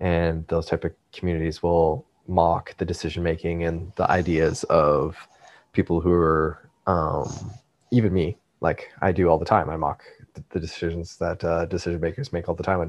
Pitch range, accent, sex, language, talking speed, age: 85-95 Hz, American, male, English, 175 wpm, 20-39